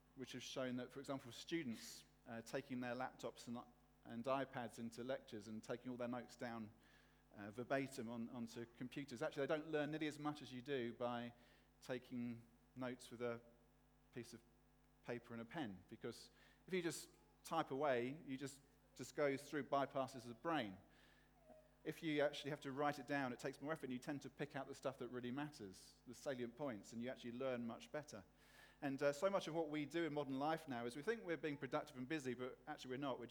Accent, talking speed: British, 215 wpm